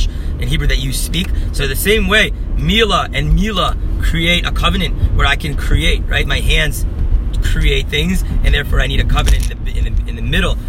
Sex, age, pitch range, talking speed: male, 30-49, 80-125 Hz, 210 wpm